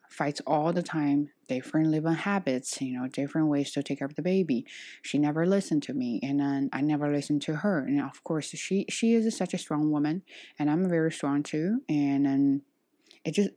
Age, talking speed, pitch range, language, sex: 20-39, 215 wpm, 150-220 Hz, English, female